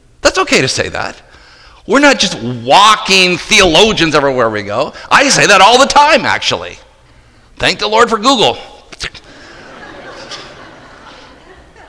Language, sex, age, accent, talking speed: English, male, 50-69, American, 130 wpm